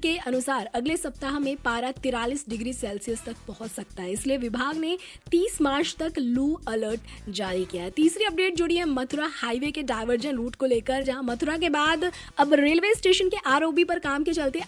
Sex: female